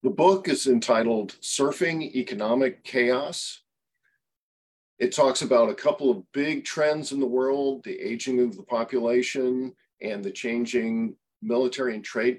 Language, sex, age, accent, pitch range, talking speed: English, male, 50-69, American, 110-130 Hz, 140 wpm